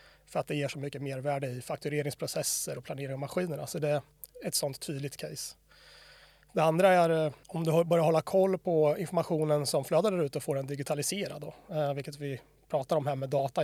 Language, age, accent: Swedish, 30-49, native